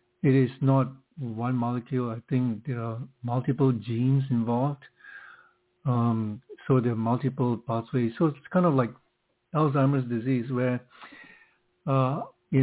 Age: 60-79